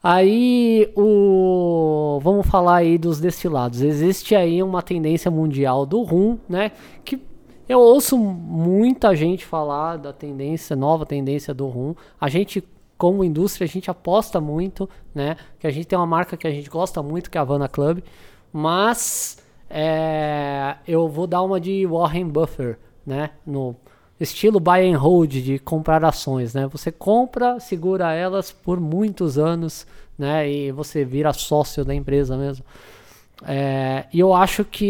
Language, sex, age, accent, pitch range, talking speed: Portuguese, male, 20-39, Brazilian, 145-190 Hz, 150 wpm